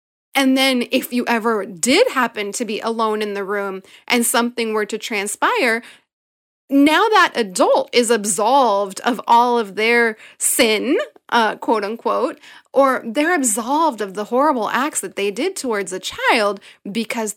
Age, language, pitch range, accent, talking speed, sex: 30-49, English, 205-265 Hz, American, 155 wpm, female